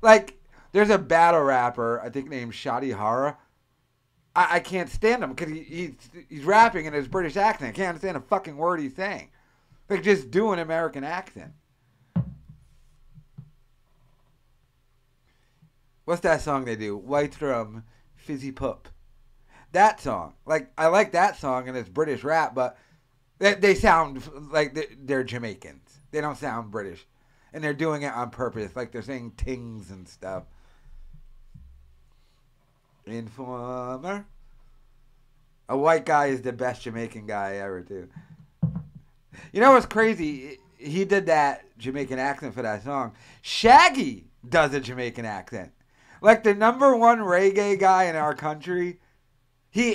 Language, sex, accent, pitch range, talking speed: English, male, American, 125-170 Hz, 140 wpm